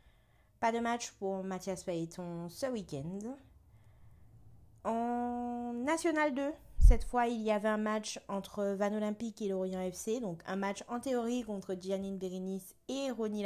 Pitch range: 170-220 Hz